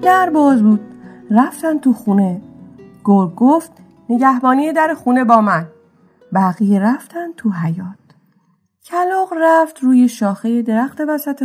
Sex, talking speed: female, 120 wpm